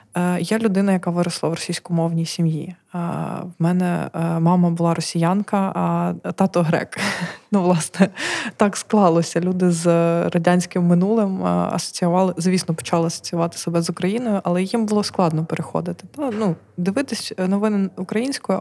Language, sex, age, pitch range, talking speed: Ukrainian, female, 20-39, 170-195 Hz, 130 wpm